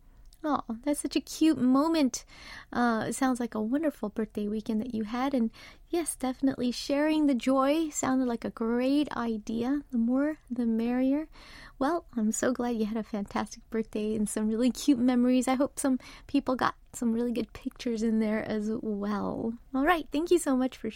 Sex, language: female, English